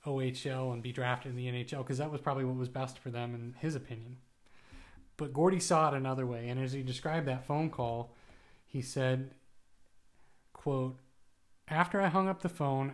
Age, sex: 30-49, male